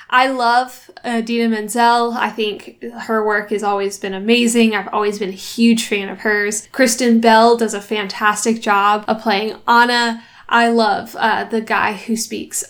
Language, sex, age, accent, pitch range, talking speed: English, female, 10-29, American, 215-255 Hz, 175 wpm